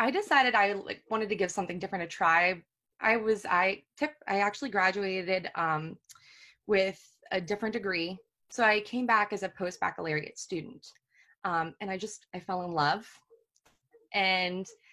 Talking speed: 155 wpm